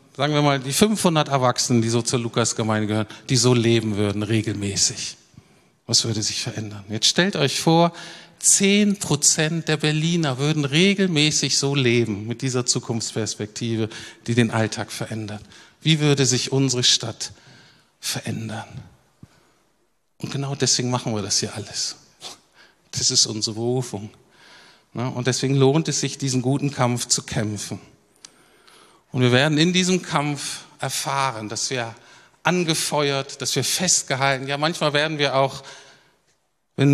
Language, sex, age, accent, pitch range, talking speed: German, male, 50-69, German, 115-145 Hz, 140 wpm